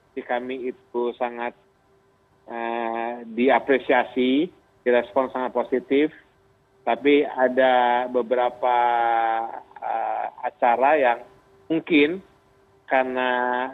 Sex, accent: male, native